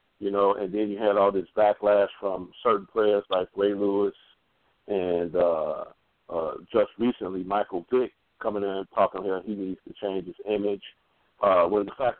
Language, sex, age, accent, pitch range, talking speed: English, male, 50-69, American, 100-130 Hz, 180 wpm